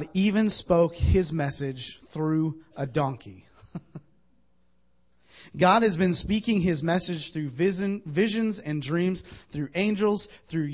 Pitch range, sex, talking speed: 125-185 Hz, male, 110 wpm